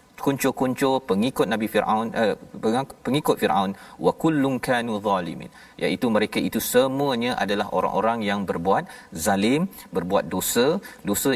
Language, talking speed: Malayalam, 120 wpm